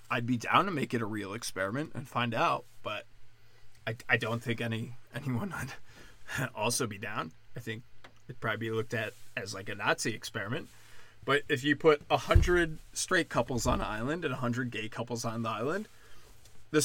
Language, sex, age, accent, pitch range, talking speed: English, male, 20-39, American, 115-140 Hz, 195 wpm